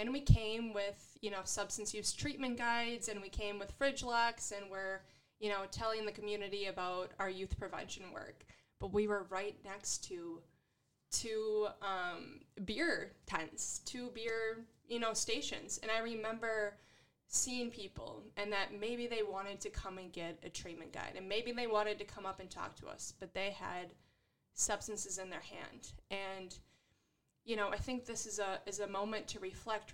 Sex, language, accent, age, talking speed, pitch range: female, English, American, 20-39, 180 wpm, 195-225 Hz